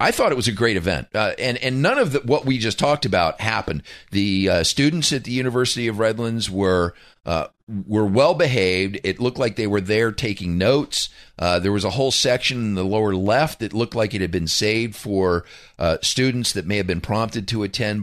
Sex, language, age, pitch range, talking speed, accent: male, English, 40-59, 95-130 Hz, 225 wpm, American